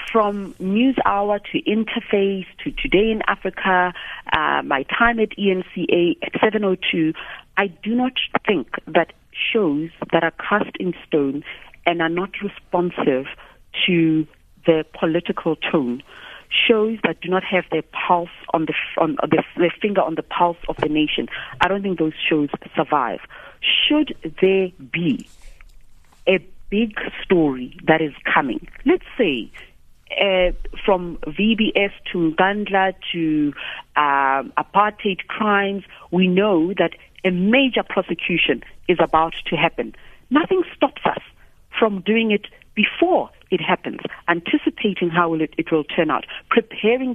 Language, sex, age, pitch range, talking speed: English, female, 40-59, 165-215 Hz, 135 wpm